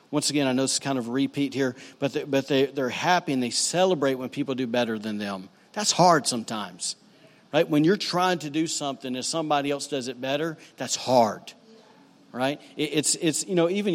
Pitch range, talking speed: 135-170 Hz, 215 wpm